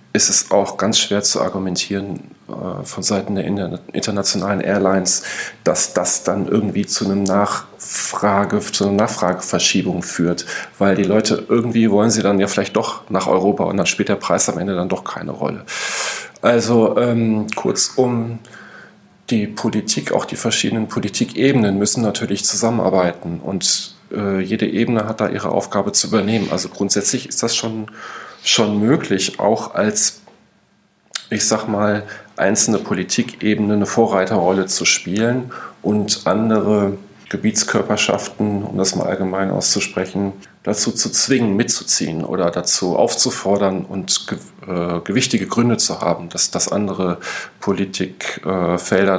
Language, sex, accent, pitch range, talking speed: German, male, German, 95-110 Hz, 135 wpm